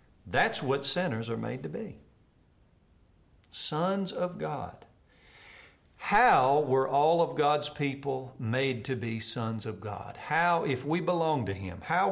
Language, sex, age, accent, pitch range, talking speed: English, male, 50-69, American, 110-155 Hz, 145 wpm